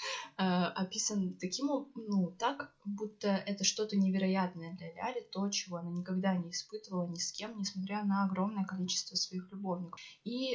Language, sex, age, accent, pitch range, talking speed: Russian, female, 20-39, native, 185-215 Hz, 150 wpm